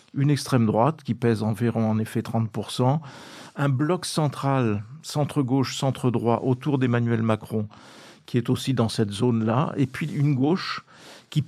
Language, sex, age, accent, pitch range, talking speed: French, male, 50-69, French, 115-145 Hz, 145 wpm